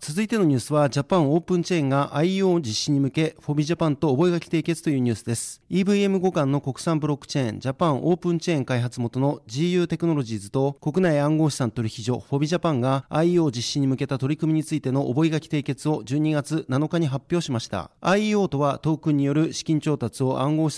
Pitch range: 135-165 Hz